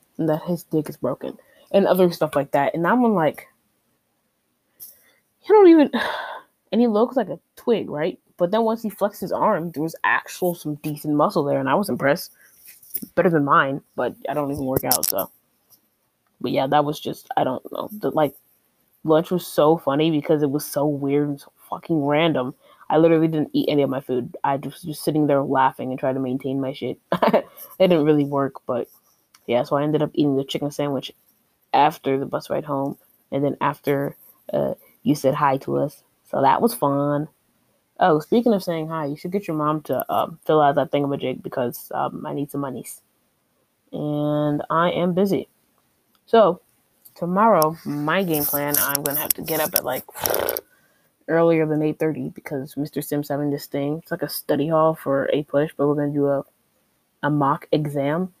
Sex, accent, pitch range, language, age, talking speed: female, American, 140-170 Hz, English, 20-39, 200 wpm